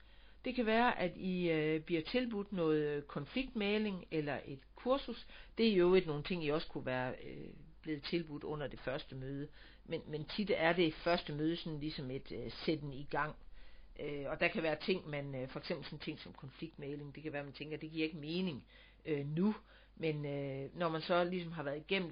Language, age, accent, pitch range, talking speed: Danish, 60-79, native, 145-185 Hz, 220 wpm